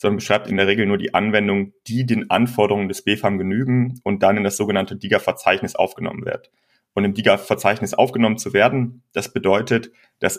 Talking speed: 180 wpm